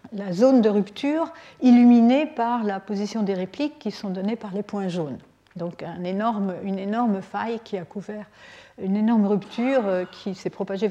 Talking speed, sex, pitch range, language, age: 175 wpm, female, 185-225 Hz, French, 60-79